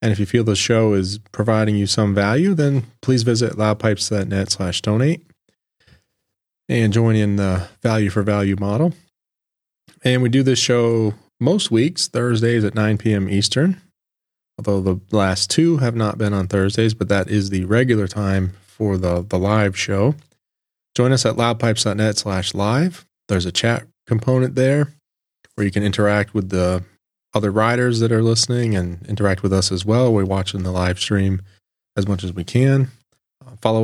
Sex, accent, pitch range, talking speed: male, American, 100-120 Hz, 170 wpm